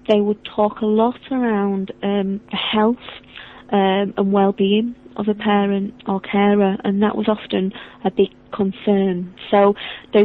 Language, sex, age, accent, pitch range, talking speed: English, female, 30-49, British, 195-220 Hz, 150 wpm